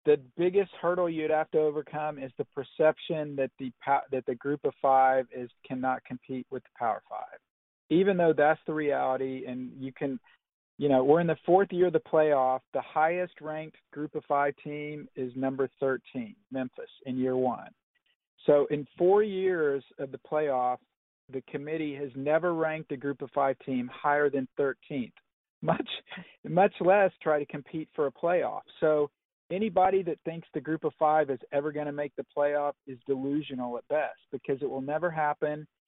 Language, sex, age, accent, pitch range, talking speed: English, male, 50-69, American, 140-170 Hz, 180 wpm